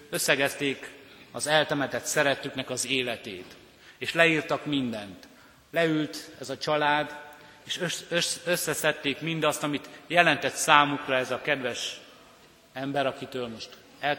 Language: Hungarian